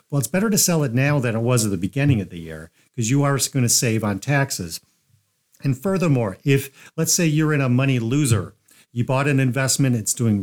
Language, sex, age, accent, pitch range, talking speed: English, male, 50-69, American, 115-145 Hz, 230 wpm